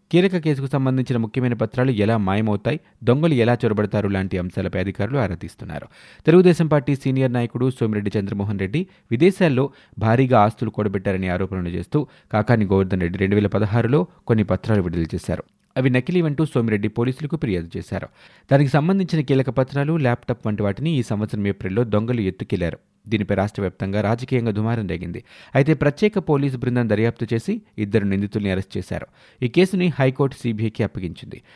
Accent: native